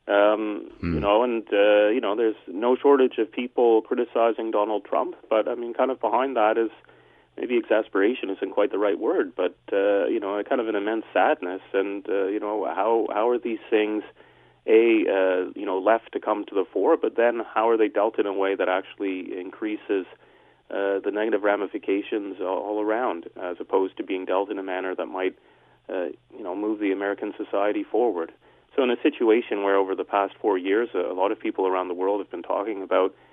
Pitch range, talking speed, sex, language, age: 95-125 Hz, 210 wpm, male, English, 30-49